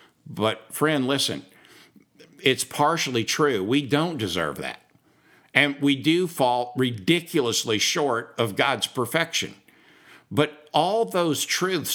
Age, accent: 60-79, American